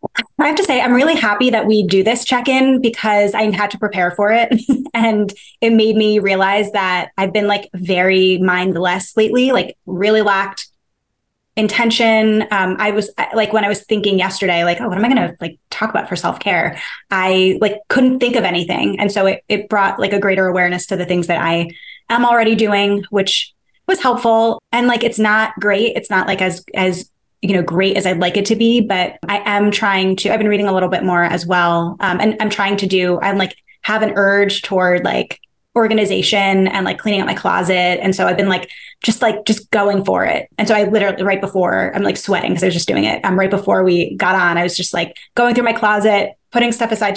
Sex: female